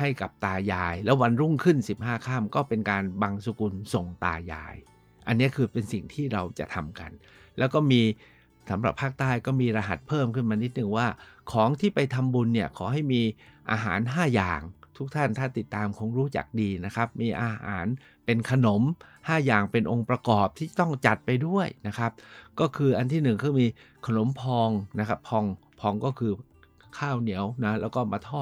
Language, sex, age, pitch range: Thai, male, 60-79, 105-130 Hz